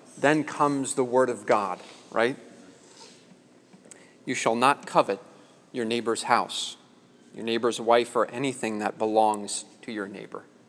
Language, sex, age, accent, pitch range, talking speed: English, male, 30-49, American, 115-145 Hz, 135 wpm